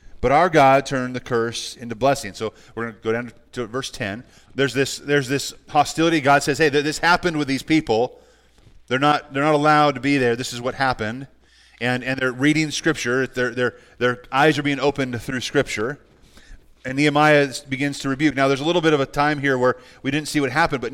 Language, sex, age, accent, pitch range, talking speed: English, male, 30-49, American, 125-155 Hz, 220 wpm